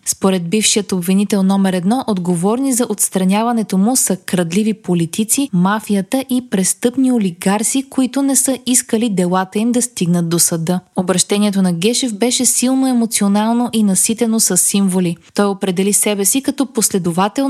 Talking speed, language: 145 wpm, Bulgarian